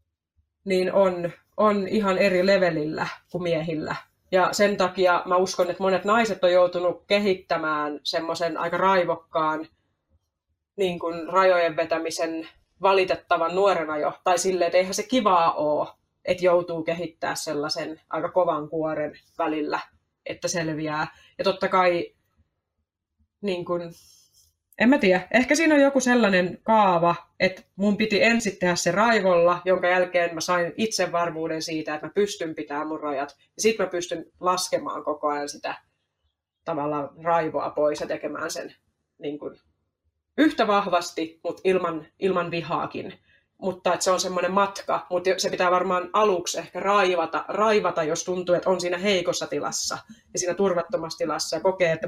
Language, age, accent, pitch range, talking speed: Finnish, 30-49, native, 165-195 Hz, 145 wpm